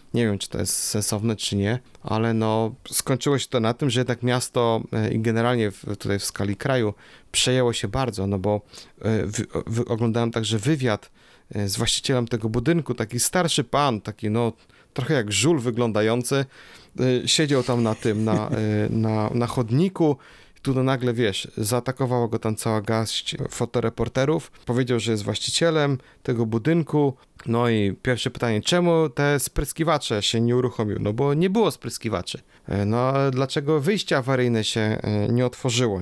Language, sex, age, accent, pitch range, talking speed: Polish, male, 30-49, native, 110-130 Hz, 155 wpm